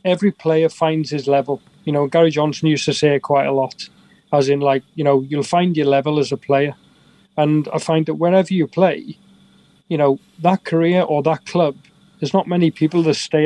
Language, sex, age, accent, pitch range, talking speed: English, male, 30-49, British, 145-170 Hz, 210 wpm